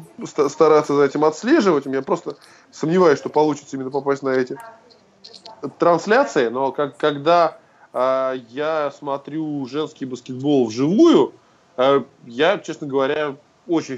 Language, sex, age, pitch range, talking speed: Russian, male, 20-39, 130-160 Hz, 120 wpm